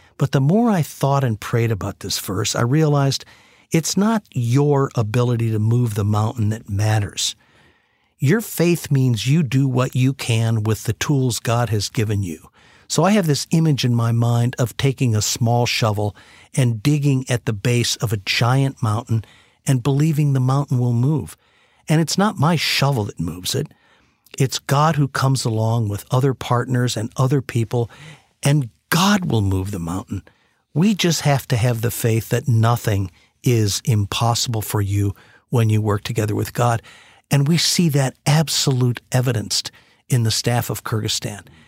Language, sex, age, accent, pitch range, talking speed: English, male, 50-69, American, 110-140 Hz, 175 wpm